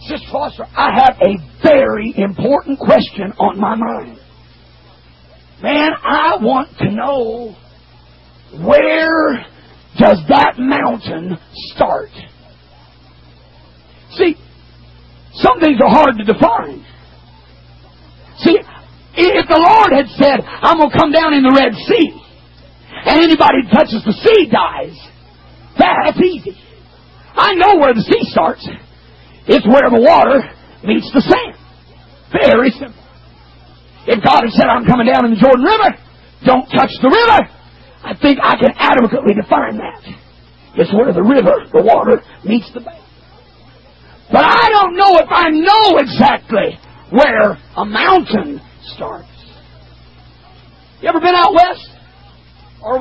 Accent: American